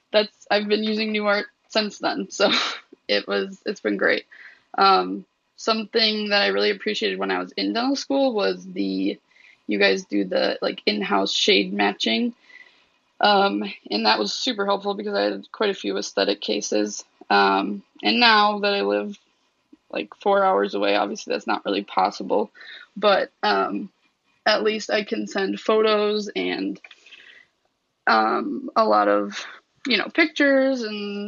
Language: English